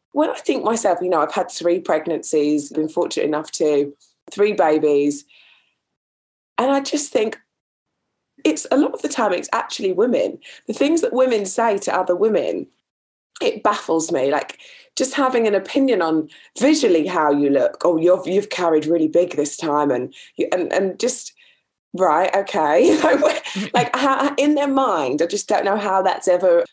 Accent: British